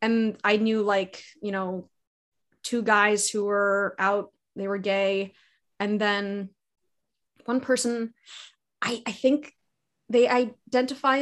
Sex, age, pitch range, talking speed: female, 20-39, 200-245 Hz, 125 wpm